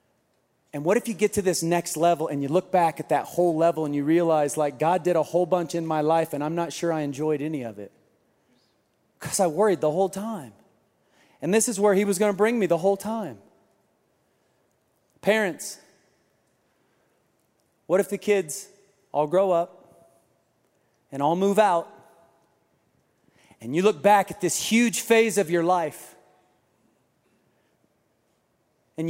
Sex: male